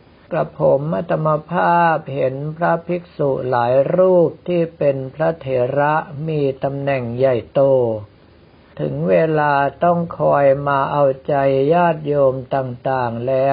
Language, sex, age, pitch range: Thai, male, 60-79, 135-165 Hz